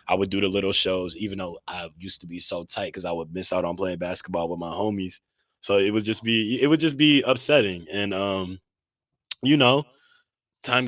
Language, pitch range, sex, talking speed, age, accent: English, 85-100 Hz, male, 220 wpm, 20-39, American